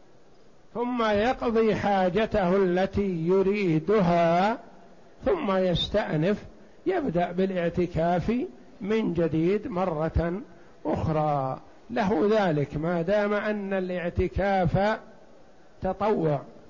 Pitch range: 170-205 Hz